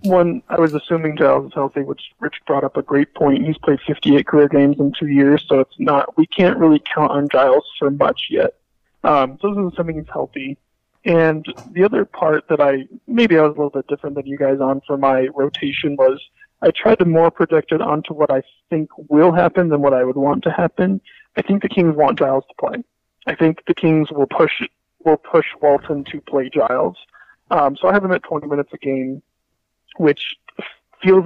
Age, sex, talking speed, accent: 20-39, male, 215 wpm, American